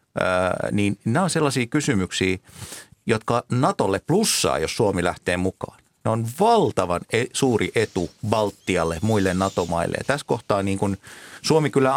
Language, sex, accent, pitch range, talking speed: Finnish, male, native, 95-120 Hz, 145 wpm